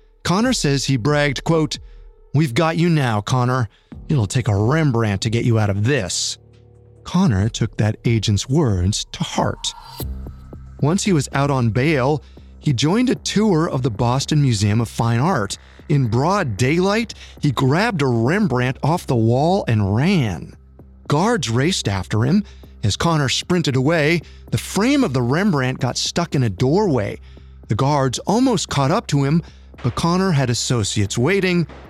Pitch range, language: 105-160 Hz, English